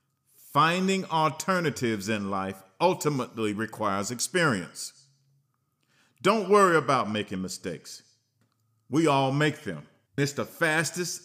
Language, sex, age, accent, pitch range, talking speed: English, male, 50-69, American, 115-175 Hz, 100 wpm